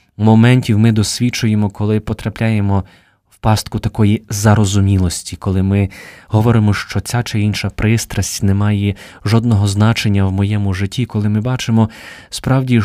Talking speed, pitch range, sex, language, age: 130 wpm, 105-130 Hz, male, Ukrainian, 20-39